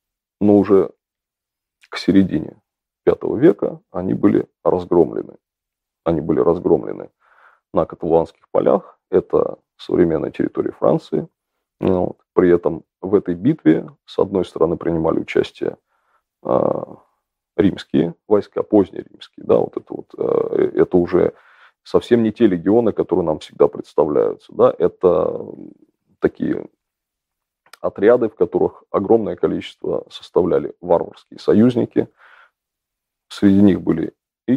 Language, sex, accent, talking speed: Russian, male, native, 100 wpm